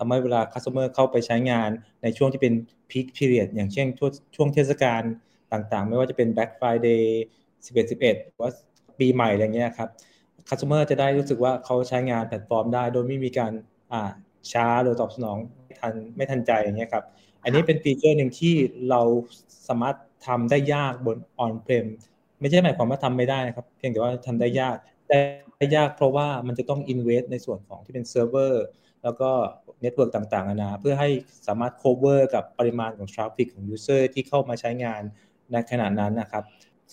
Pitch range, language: 115-135 Hz, Thai